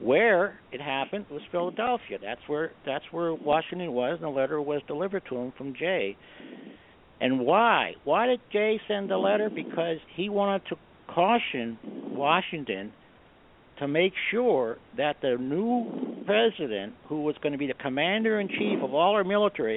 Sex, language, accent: male, English, American